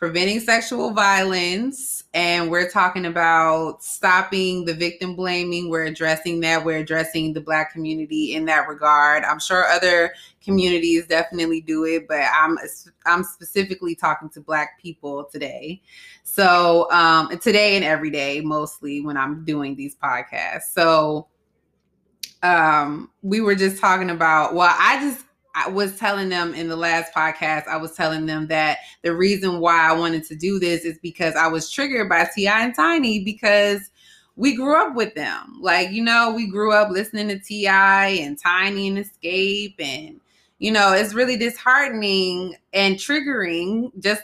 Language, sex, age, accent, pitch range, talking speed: English, female, 20-39, American, 160-200 Hz, 160 wpm